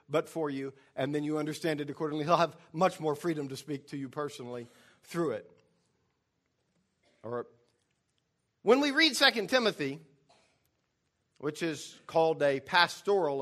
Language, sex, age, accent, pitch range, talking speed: English, male, 50-69, American, 150-220 Hz, 150 wpm